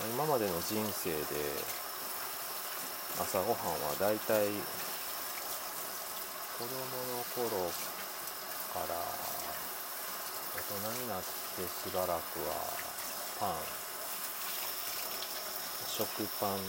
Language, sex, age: Japanese, male, 40-59